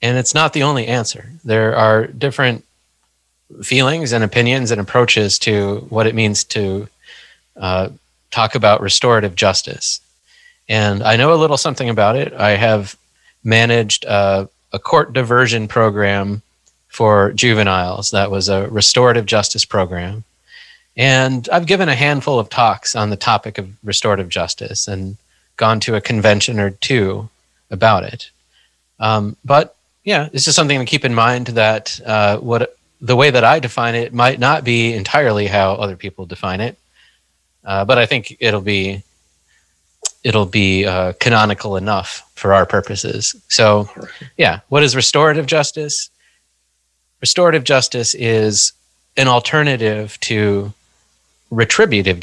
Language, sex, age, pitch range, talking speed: English, male, 30-49, 100-125 Hz, 145 wpm